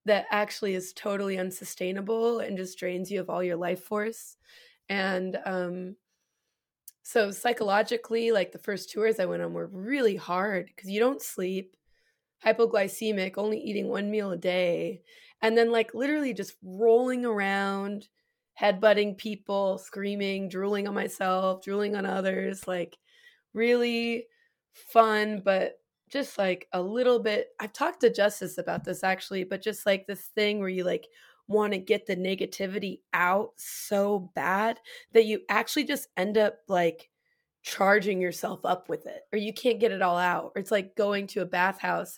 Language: English